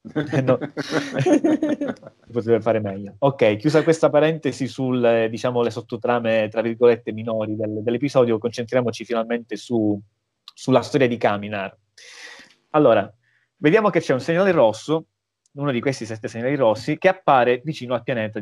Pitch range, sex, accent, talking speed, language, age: 110-140 Hz, male, native, 120 wpm, Italian, 30-49